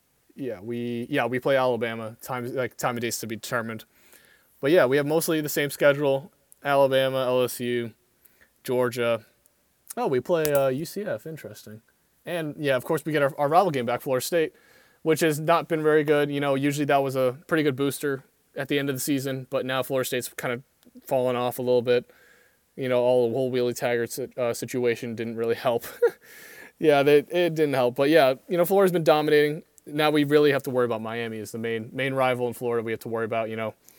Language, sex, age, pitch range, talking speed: English, male, 20-39, 125-175 Hz, 215 wpm